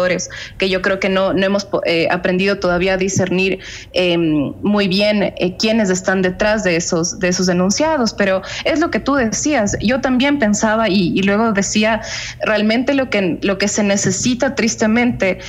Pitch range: 185-225 Hz